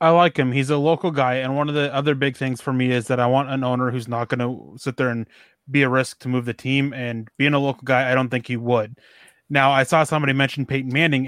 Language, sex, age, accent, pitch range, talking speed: English, male, 20-39, American, 130-150 Hz, 280 wpm